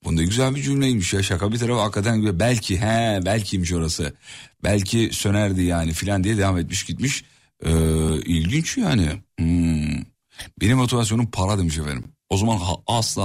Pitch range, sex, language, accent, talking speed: 90-145 Hz, male, Turkish, native, 165 wpm